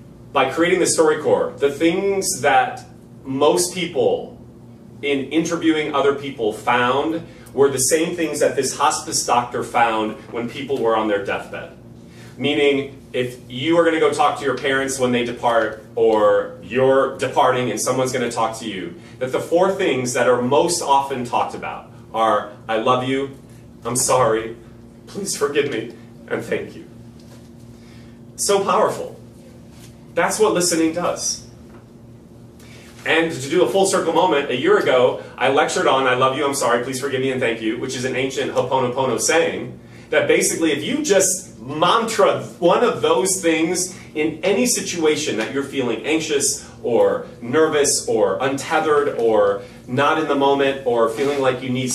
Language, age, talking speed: English, 30-49, 165 wpm